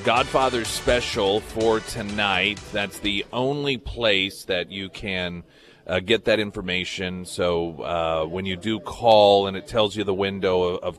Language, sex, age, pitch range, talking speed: English, male, 30-49, 90-110 Hz, 155 wpm